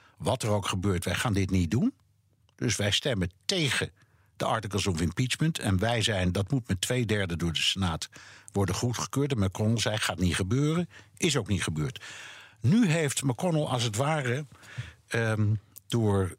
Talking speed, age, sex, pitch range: 175 wpm, 60-79, male, 100-130 Hz